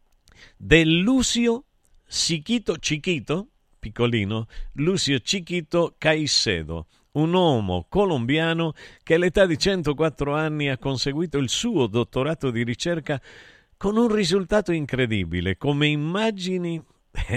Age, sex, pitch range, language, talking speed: 50-69, male, 115-165 Hz, Italian, 85 wpm